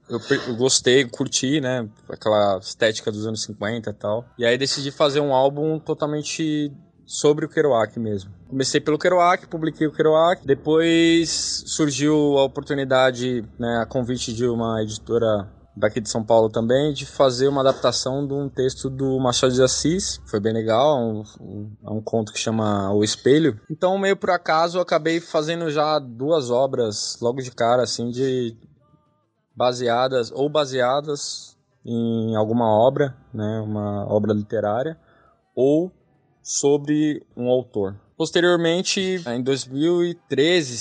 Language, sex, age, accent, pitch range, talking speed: Portuguese, male, 20-39, Brazilian, 115-155 Hz, 140 wpm